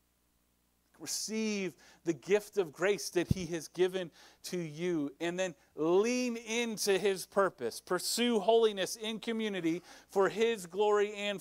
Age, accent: 40-59, American